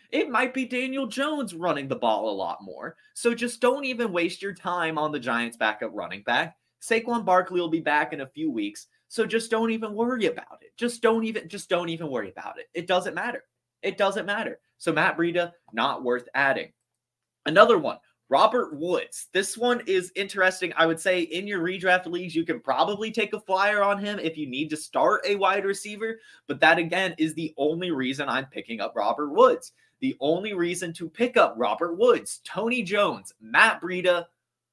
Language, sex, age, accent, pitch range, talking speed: English, male, 20-39, American, 150-220 Hz, 200 wpm